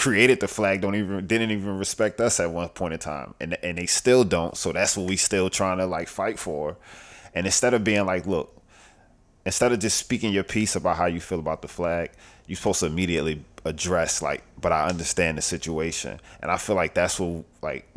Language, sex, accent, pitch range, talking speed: English, male, American, 85-100 Hz, 220 wpm